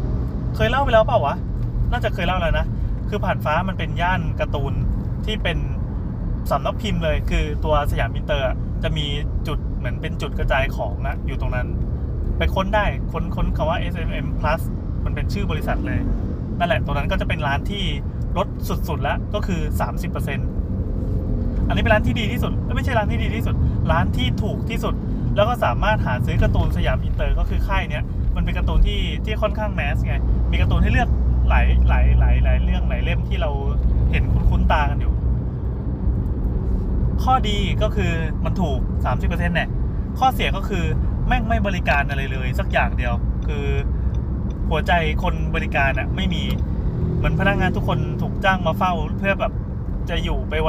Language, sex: Thai, male